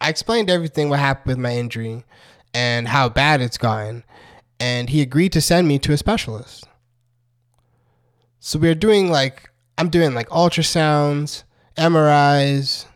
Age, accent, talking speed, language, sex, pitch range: 20-39, American, 150 wpm, English, male, 120-150 Hz